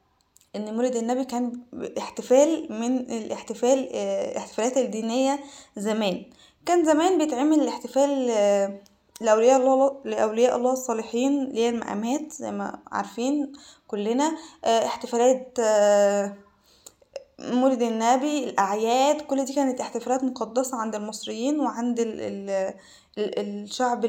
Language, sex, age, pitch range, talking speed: Arabic, female, 10-29, 225-275 Hz, 90 wpm